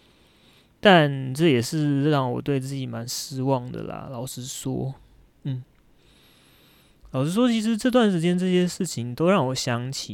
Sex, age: male, 20-39